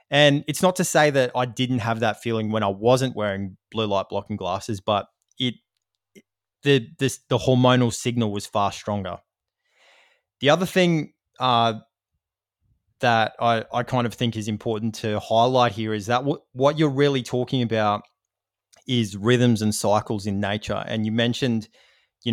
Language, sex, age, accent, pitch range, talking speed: English, male, 20-39, Australian, 105-125 Hz, 165 wpm